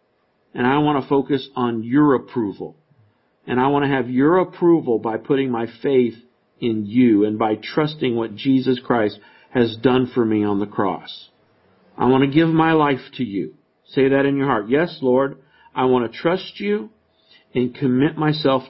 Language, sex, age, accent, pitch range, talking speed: English, male, 50-69, American, 115-150 Hz, 185 wpm